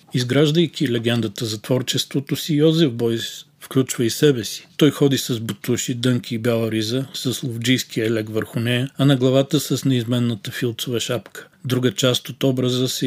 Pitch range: 120-140 Hz